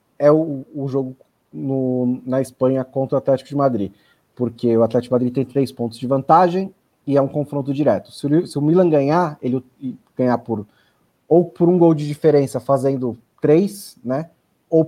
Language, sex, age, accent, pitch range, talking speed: Portuguese, male, 20-39, Brazilian, 120-145 Hz, 175 wpm